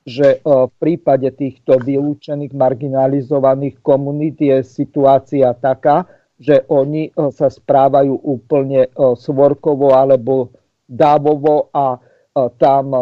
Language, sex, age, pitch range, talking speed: Czech, male, 50-69, 135-155 Hz, 90 wpm